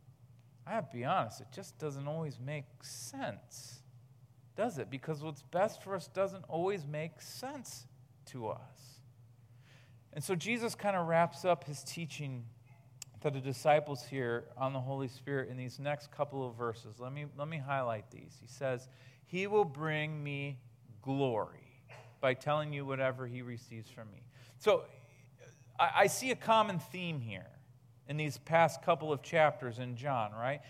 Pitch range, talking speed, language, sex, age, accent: 130-170 Hz, 165 wpm, English, male, 40-59, American